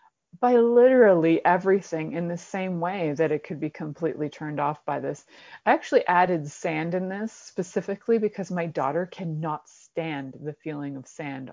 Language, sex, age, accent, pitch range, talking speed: English, female, 30-49, American, 155-185 Hz, 165 wpm